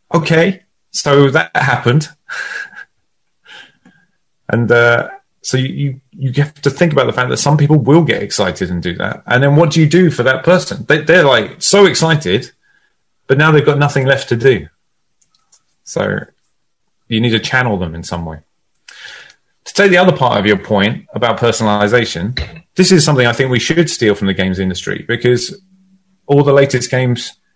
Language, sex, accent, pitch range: English, male, British, 115-150 Hz